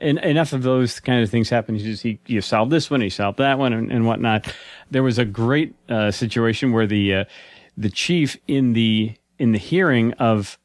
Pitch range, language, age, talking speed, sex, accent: 110-135 Hz, English, 40-59, 215 wpm, male, American